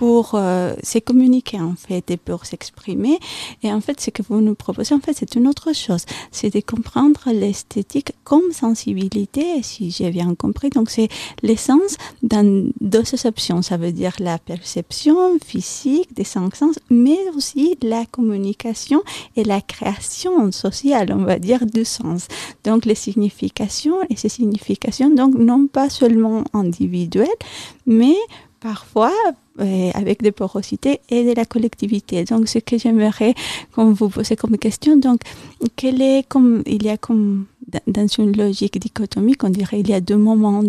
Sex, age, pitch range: female, 30-49, 205-255 Hz